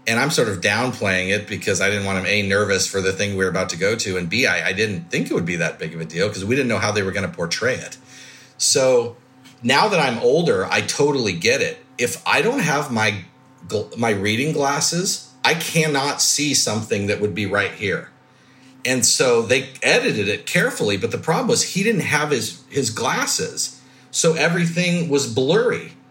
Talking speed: 215 wpm